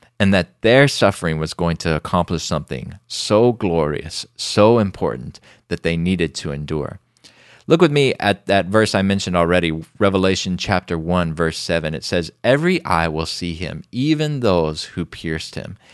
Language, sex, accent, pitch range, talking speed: English, male, American, 80-105 Hz, 165 wpm